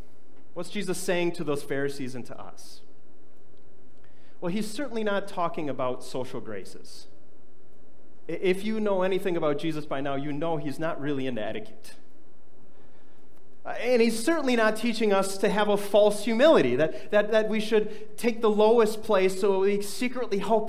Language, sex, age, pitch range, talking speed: English, male, 30-49, 155-220 Hz, 160 wpm